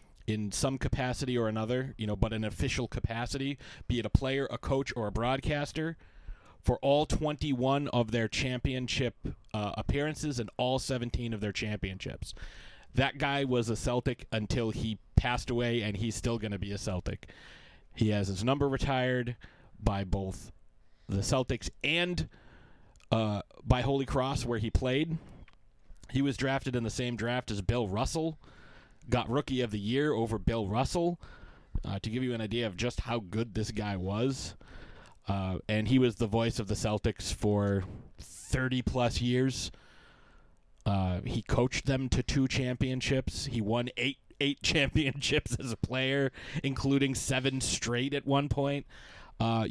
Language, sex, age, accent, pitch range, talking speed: English, male, 30-49, American, 105-130 Hz, 160 wpm